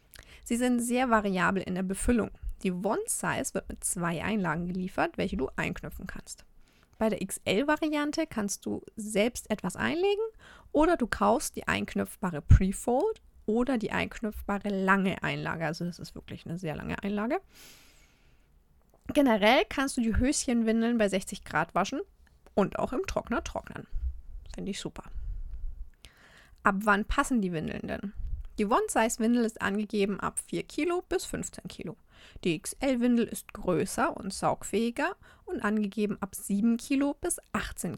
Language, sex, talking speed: German, female, 145 wpm